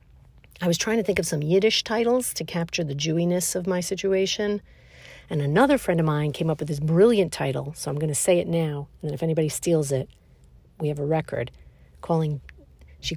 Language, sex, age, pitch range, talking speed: English, female, 50-69, 130-195 Hz, 210 wpm